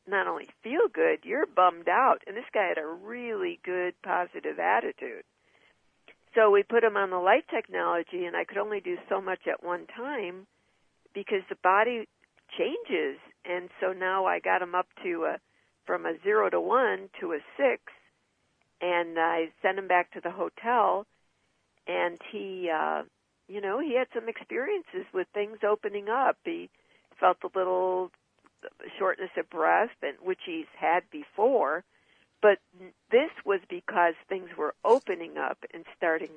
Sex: female